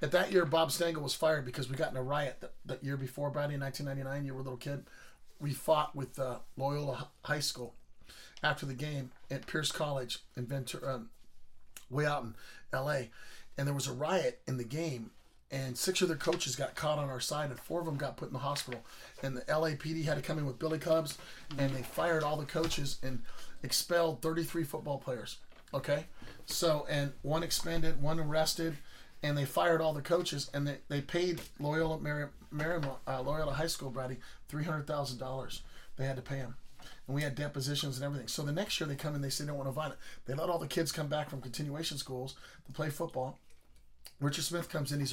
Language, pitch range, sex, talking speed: English, 135-160 Hz, male, 215 wpm